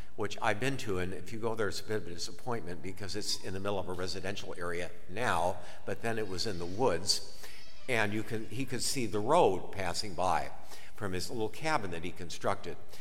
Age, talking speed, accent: 60-79, 215 wpm, American